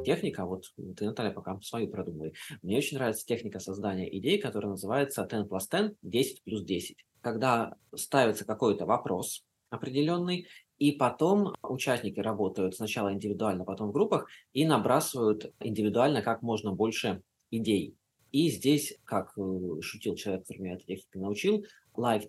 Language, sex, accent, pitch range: Russian, male, native, 100-130 Hz